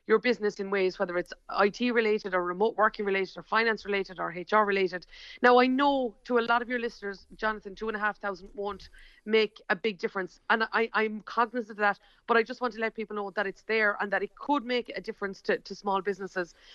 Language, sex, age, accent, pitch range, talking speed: English, female, 30-49, Irish, 195-235 Hz, 235 wpm